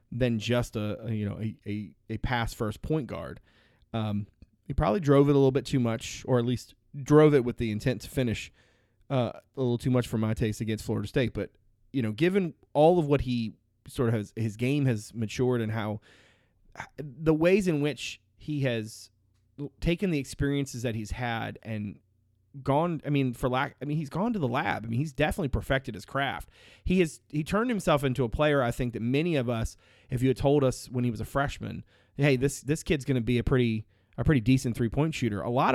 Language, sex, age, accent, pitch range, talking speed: English, male, 30-49, American, 110-140 Hz, 220 wpm